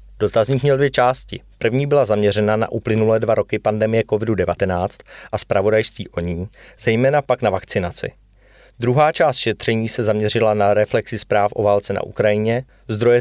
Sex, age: male, 30-49